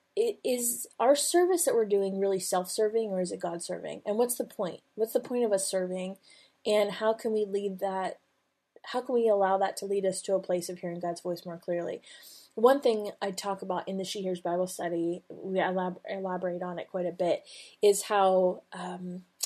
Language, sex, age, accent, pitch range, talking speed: English, female, 20-39, American, 180-215 Hz, 210 wpm